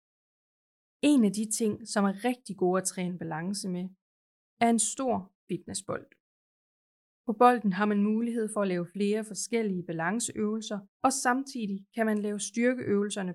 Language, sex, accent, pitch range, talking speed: Danish, female, native, 185-220 Hz, 150 wpm